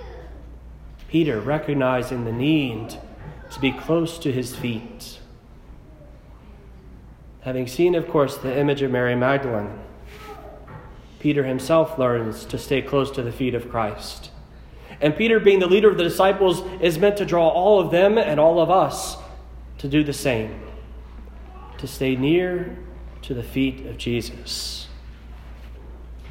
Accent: American